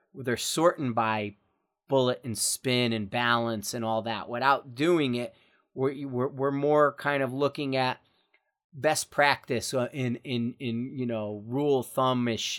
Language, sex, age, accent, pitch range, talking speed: English, male, 30-49, American, 120-155 Hz, 145 wpm